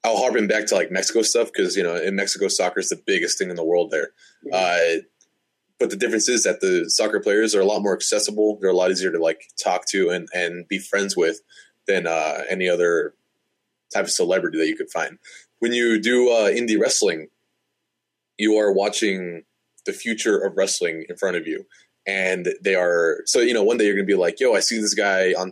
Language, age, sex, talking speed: English, 20-39, male, 225 wpm